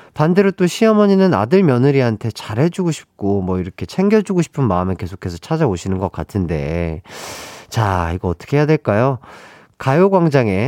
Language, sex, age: Korean, male, 40-59